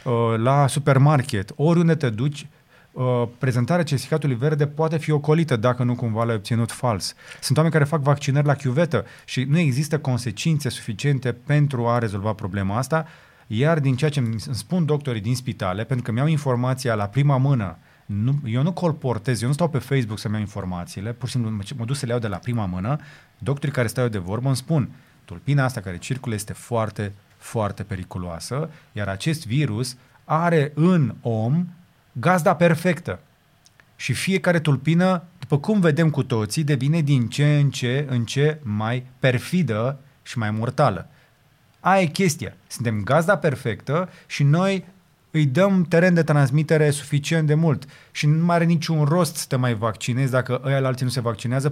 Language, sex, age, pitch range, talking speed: Romanian, male, 30-49, 120-155 Hz, 175 wpm